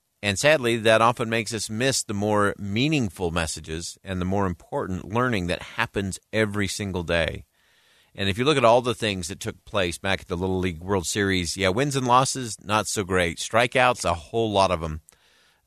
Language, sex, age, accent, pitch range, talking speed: English, male, 50-69, American, 95-135 Hz, 205 wpm